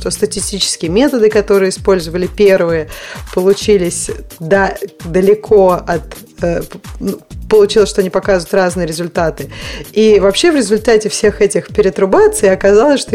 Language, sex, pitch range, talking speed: Russian, female, 175-210 Hz, 120 wpm